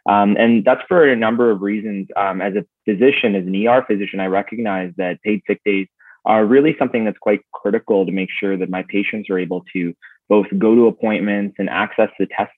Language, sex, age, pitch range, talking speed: English, male, 20-39, 95-115 Hz, 215 wpm